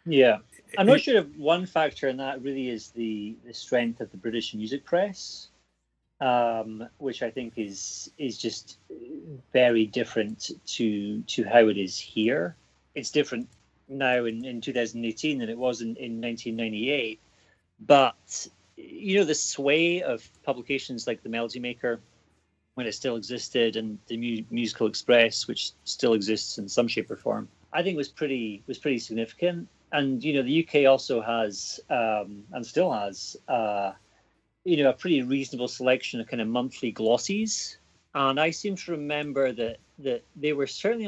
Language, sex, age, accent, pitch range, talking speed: English, male, 30-49, British, 110-135 Hz, 165 wpm